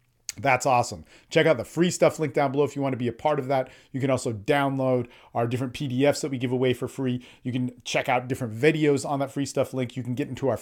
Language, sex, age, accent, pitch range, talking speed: English, male, 40-59, American, 125-155 Hz, 270 wpm